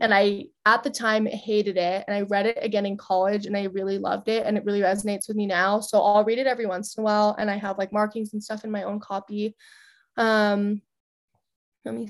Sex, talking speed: female, 240 wpm